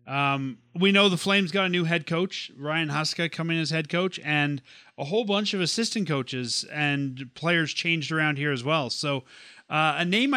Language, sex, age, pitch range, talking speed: English, male, 30-49, 145-185 Hz, 195 wpm